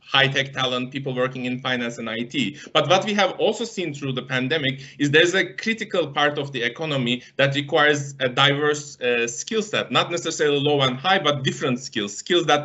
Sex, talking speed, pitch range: male, 200 wpm, 130-155 Hz